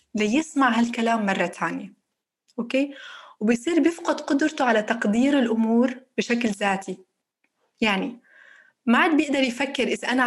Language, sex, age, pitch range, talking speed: Arabic, female, 20-39, 205-275 Hz, 115 wpm